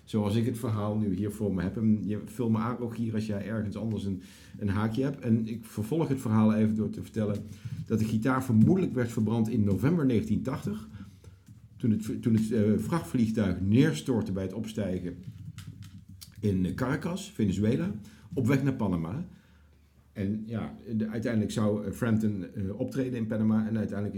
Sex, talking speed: male, 165 wpm